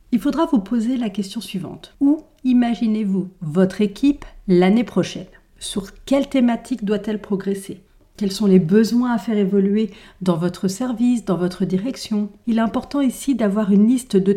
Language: French